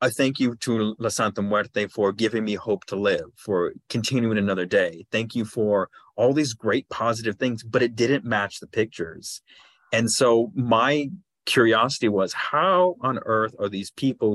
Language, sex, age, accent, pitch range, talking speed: English, male, 30-49, American, 105-125 Hz, 175 wpm